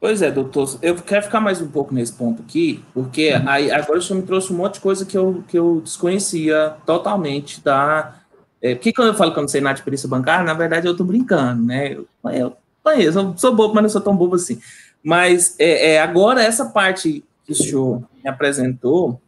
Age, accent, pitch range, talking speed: 20-39, Brazilian, 150-225 Hz, 220 wpm